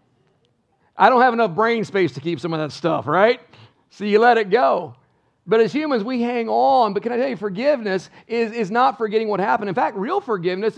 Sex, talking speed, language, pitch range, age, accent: male, 225 wpm, English, 170-225 Hz, 50-69, American